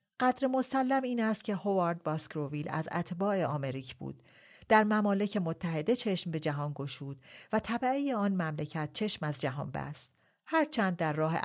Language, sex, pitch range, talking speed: Persian, female, 150-205 Hz, 150 wpm